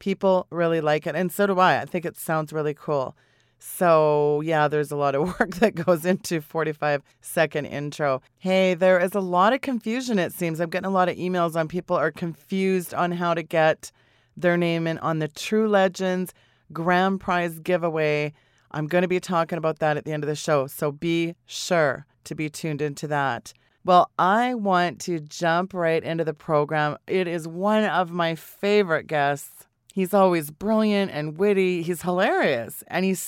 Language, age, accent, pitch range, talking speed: English, 30-49, American, 155-185 Hz, 195 wpm